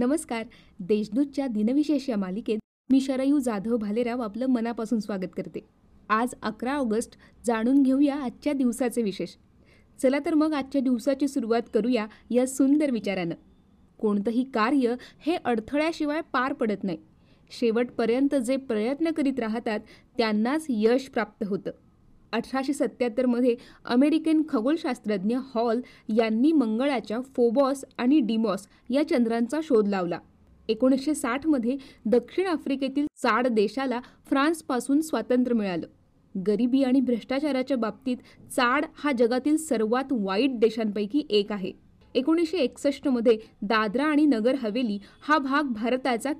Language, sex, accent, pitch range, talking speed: Marathi, female, native, 225-275 Hz, 120 wpm